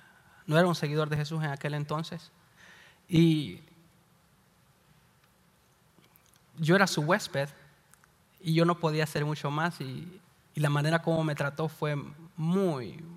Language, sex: English, male